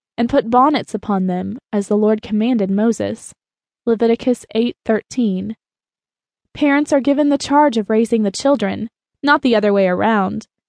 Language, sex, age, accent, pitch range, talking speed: English, female, 20-39, American, 215-260 Hz, 145 wpm